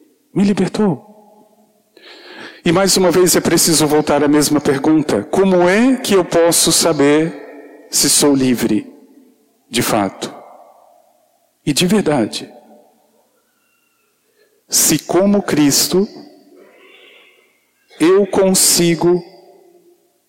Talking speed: 90 wpm